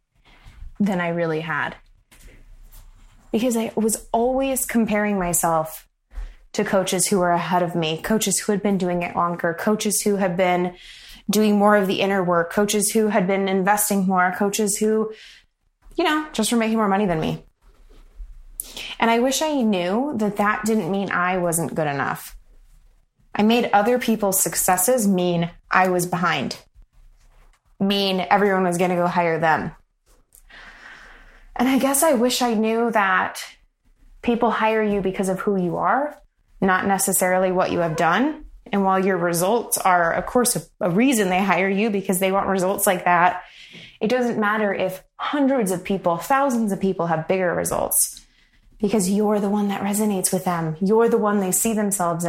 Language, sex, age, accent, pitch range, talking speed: English, female, 20-39, American, 180-220 Hz, 170 wpm